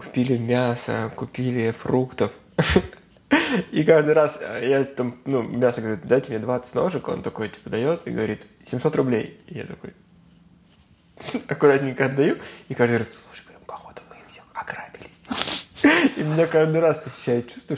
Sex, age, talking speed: male, 20-39, 140 wpm